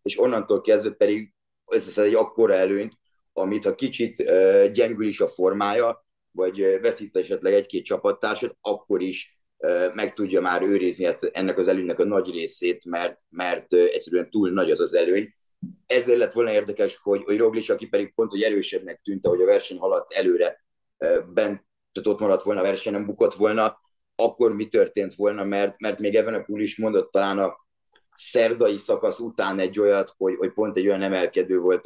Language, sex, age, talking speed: Hungarian, male, 30-49, 185 wpm